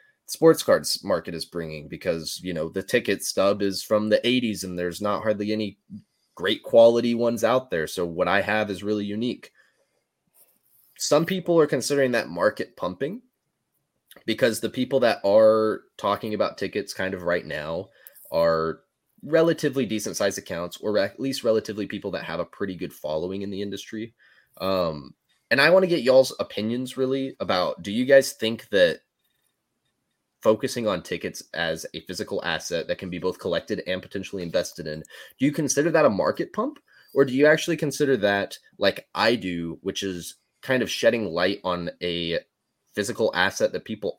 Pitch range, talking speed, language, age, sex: 95-130 Hz, 175 wpm, English, 20-39, male